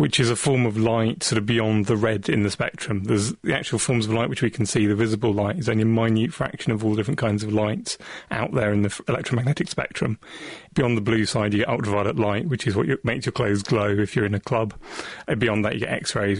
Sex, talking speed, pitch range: male, 265 wpm, 110-125 Hz